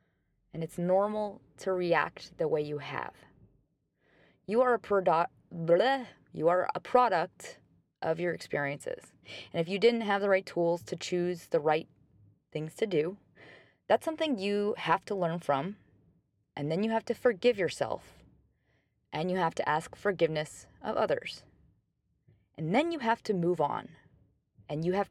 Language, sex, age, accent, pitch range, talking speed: English, female, 20-39, American, 160-205 Hz, 155 wpm